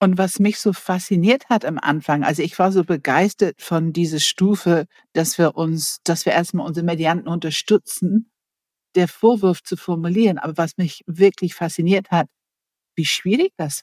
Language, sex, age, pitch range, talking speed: German, female, 60-79, 165-210 Hz, 165 wpm